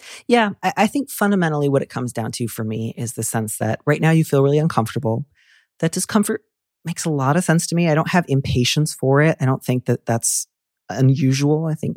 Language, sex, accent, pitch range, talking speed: English, male, American, 110-155 Hz, 220 wpm